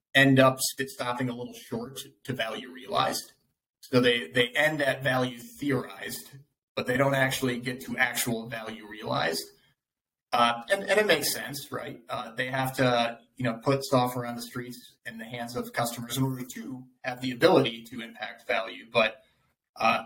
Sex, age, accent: male, 30-49, American